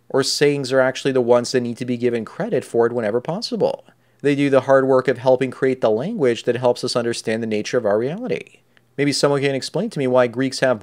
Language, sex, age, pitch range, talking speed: English, male, 30-49, 120-140 Hz, 245 wpm